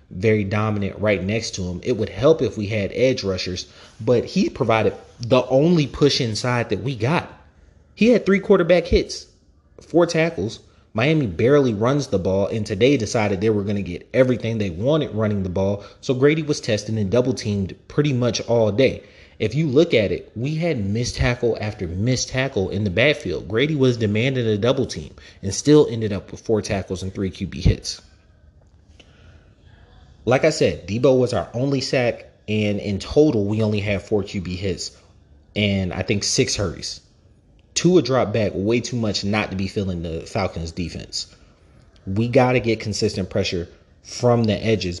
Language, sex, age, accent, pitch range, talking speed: English, male, 30-49, American, 95-125 Hz, 185 wpm